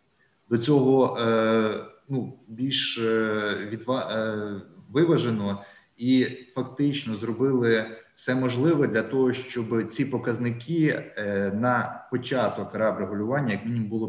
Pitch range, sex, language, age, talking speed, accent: 110-135 Hz, male, Ukrainian, 20-39, 95 wpm, native